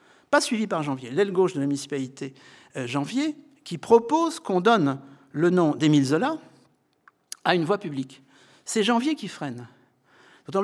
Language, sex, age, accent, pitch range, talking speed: French, male, 60-79, French, 145-240 Hz, 150 wpm